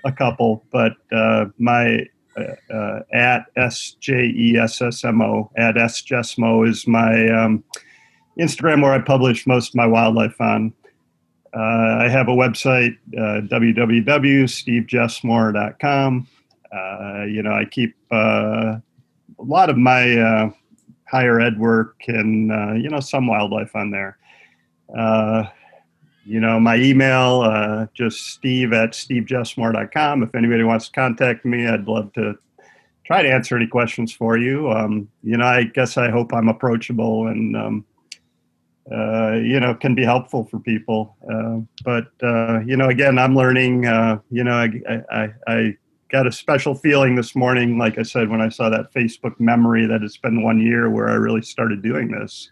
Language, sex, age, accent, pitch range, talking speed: English, male, 40-59, American, 110-125 Hz, 160 wpm